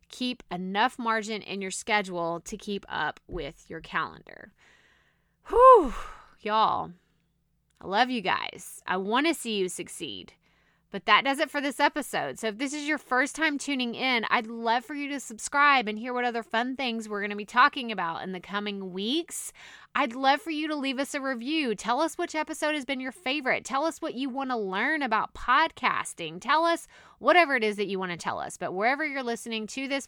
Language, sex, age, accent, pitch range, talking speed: English, female, 20-39, American, 210-280 Hz, 210 wpm